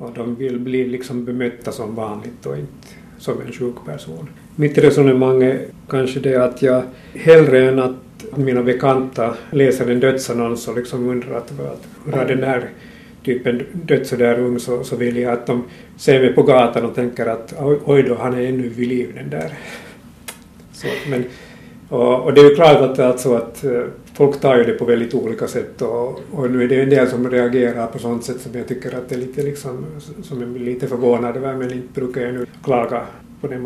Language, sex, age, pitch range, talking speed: Swedish, male, 50-69, 120-135 Hz, 200 wpm